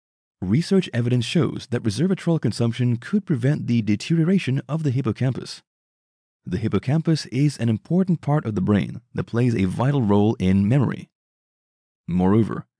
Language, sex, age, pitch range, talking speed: English, male, 30-49, 110-155 Hz, 140 wpm